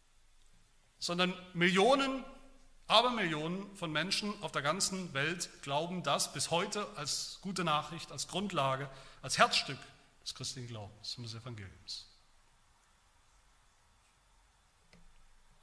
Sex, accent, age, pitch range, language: male, German, 40-59, 130-175 Hz, German